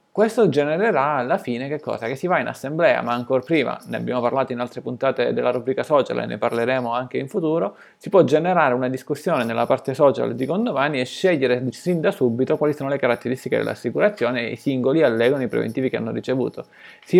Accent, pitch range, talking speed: native, 125-190 Hz, 205 wpm